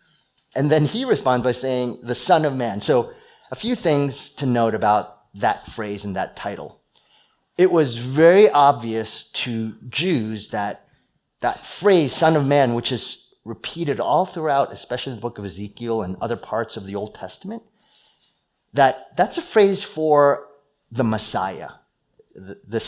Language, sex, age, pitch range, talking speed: English, male, 30-49, 115-170 Hz, 155 wpm